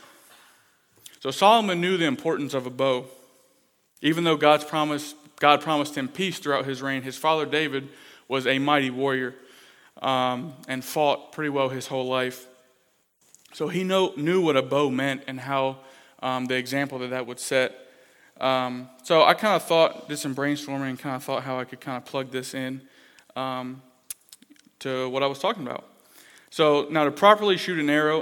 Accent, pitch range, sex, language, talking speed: American, 130-150 Hz, male, English, 185 wpm